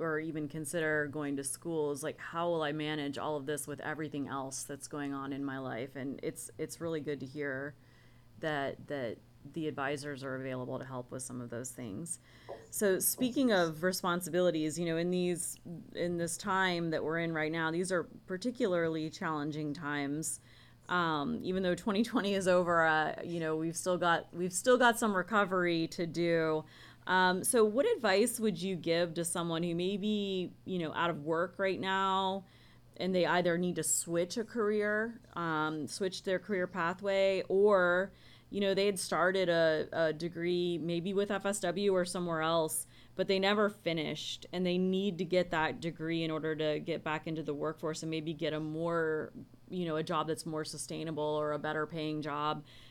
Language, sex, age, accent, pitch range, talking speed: English, female, 30-49, American, 155-185 Hz, 190 wpm